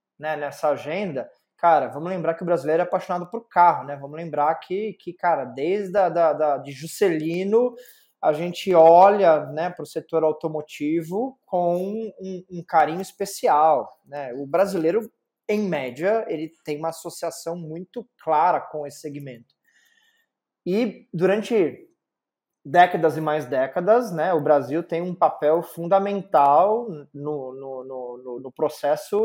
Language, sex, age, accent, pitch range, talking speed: Portuguese, male, 20-39, Brazilian, 155-195 Hz, 140 wpm